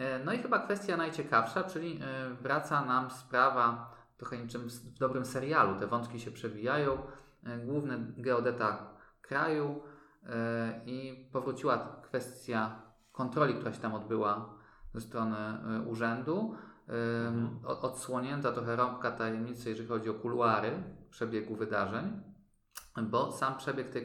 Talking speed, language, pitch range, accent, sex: 115 wpm, Polish, 115-135 Hz, native, male